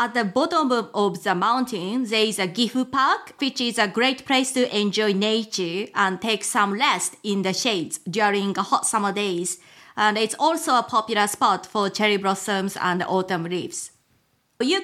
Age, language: 30-49, English